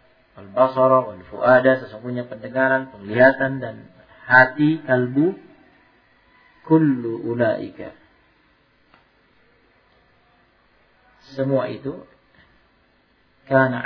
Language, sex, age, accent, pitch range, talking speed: Indonesian, male, 50-69, native, 125-150 Hz, 50 wpm